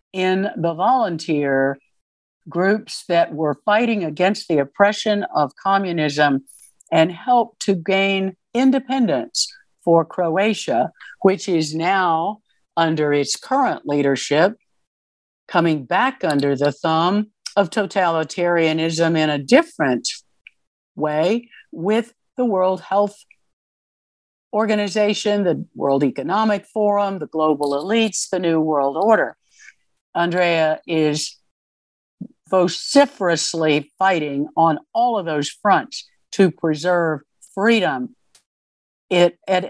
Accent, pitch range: American, 155-210 Hz